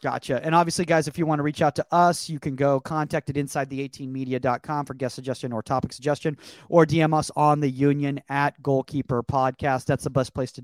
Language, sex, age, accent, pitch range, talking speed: English, male, 30-49, American, 140-165 Hz, 230 wpm